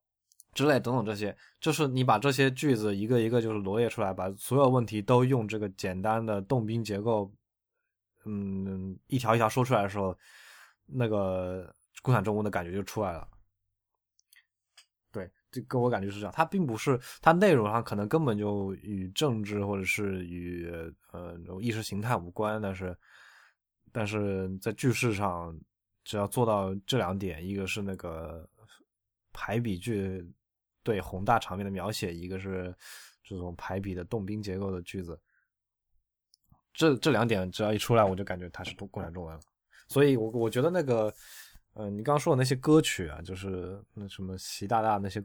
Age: 20-39